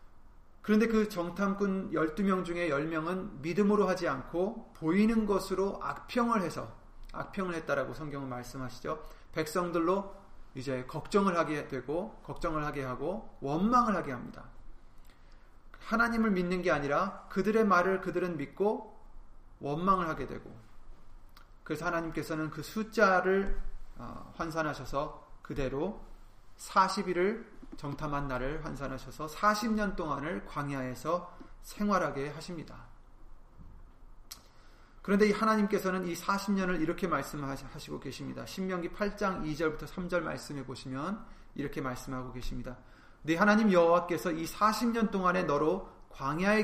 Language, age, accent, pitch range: Korean, 30-49, native, 135-200 Hz